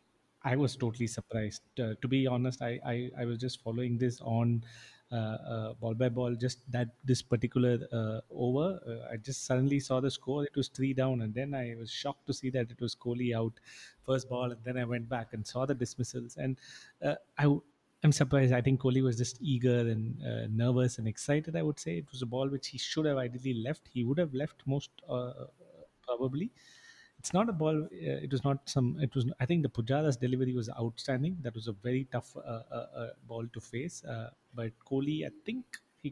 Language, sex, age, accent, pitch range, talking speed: English, male, 30-49, Indian, 120-135 Hz, 220 wpm